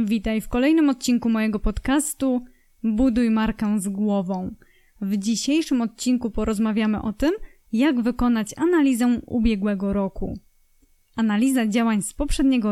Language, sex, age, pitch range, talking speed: Polish, female, 20-39, 220-285 Hz, 120 wpm